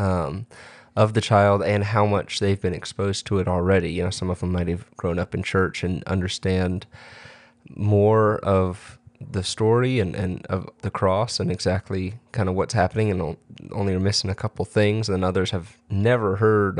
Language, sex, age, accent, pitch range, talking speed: English, male, 20-39, American, 95-110 Hz, 190 wpm